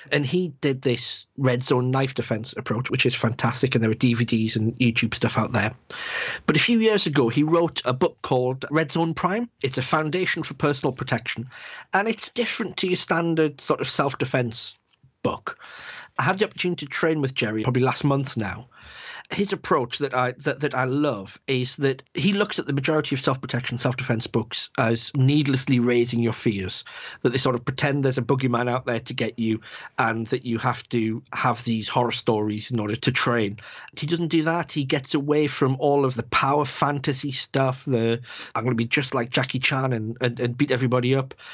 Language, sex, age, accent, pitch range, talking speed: English, male, 40-59, British, 120-145 Hz, 205 wpm